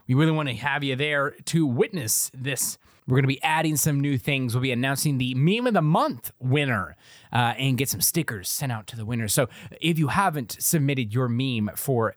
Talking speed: 220 wpm